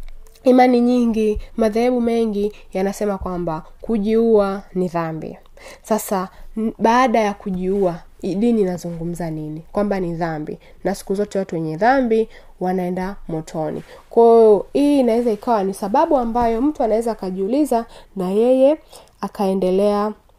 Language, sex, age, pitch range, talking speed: Swahili, female, 20-39, 185-230 Hz, 120 wpm